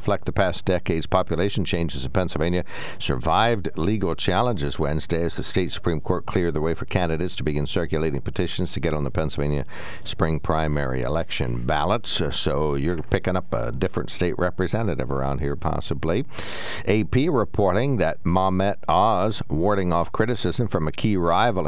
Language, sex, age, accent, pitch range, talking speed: English, male, 60-79, American, 75-95 Hz, 160 wpm